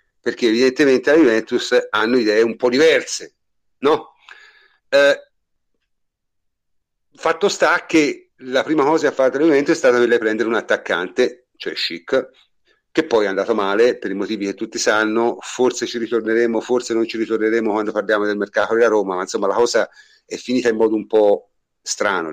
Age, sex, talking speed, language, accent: 50-69, male, 175 wpm, Italian, native